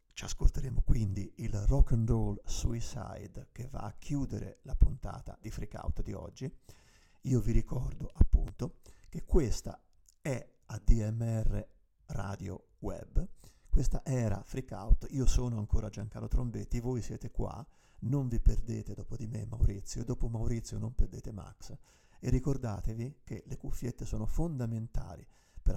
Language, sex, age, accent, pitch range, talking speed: Italian, male, 50-69, native, 105-130 Hz, 140 wpm